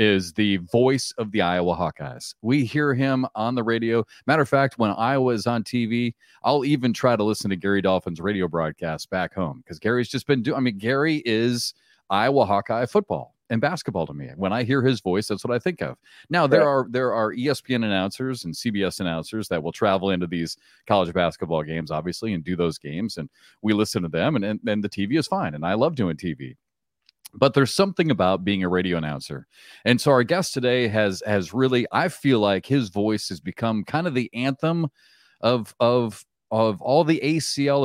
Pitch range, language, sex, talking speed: 95-130 Hz, English, male, 210 wpm